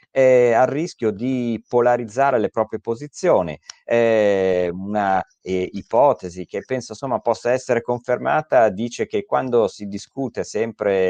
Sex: male